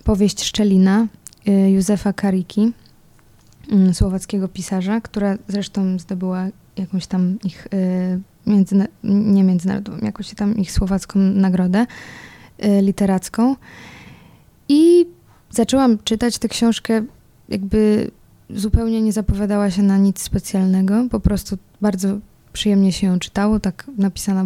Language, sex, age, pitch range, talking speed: Polish, female, 20-39, 195-215 Hz, 105 wpm